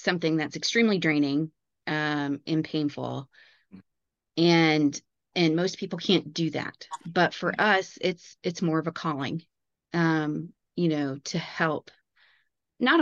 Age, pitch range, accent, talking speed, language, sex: 30-49, 150-170 Hz, American, 135 wpm, English, female